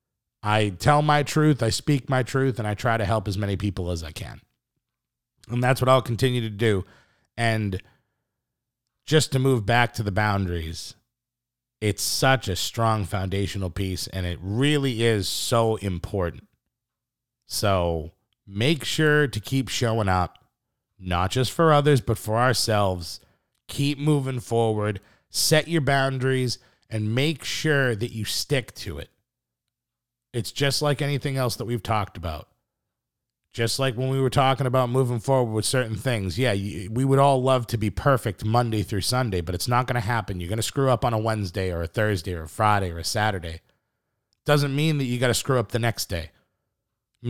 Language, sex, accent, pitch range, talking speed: English, male, American, 100-130 Hz, 180 wpm